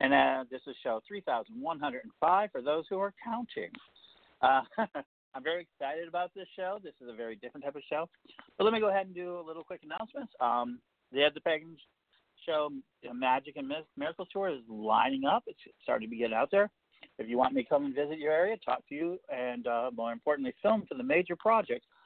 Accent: American